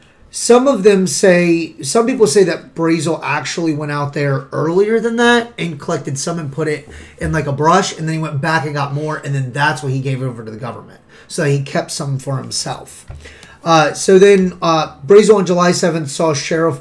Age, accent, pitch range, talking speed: 30-49, American, 140-180 Hz, 215 wpm